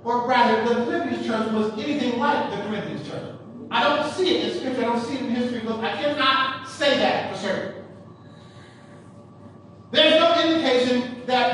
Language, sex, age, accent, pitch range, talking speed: English, male, 40-59, American, 235-295 Hz, 175 wpm